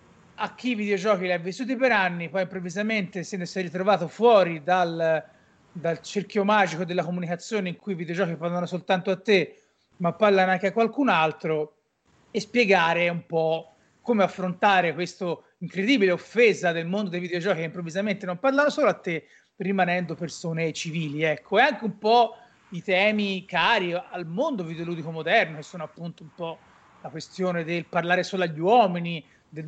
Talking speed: 170 wpm